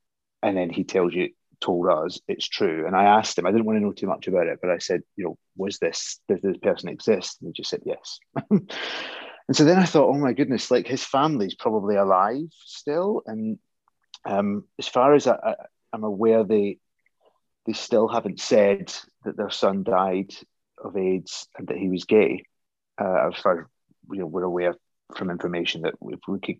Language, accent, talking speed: English, British, 205 wpm